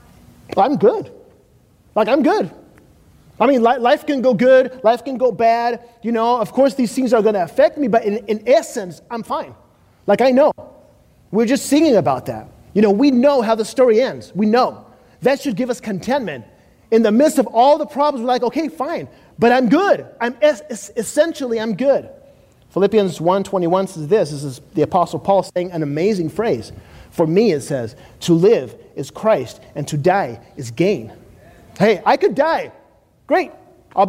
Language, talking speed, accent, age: English, 190 wpm, American, 30-49